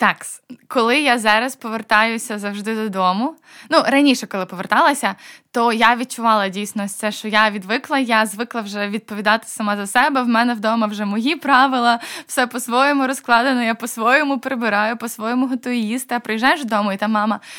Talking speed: 155 wpm